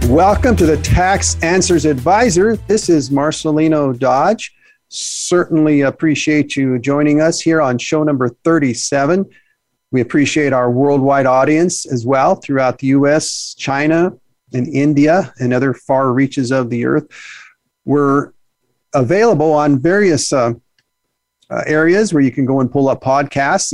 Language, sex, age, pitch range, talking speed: English, male, 40-59, 125-155 Hz, 140 wpm